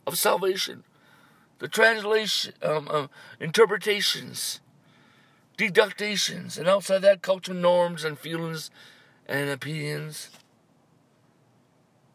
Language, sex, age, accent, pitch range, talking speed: English, male, 60-79, American, 155-215 Hz, 90 wpm